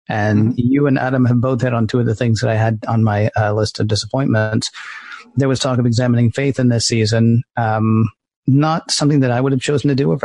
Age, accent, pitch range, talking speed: 40-59, American, 115-130 Hz, 240 wpm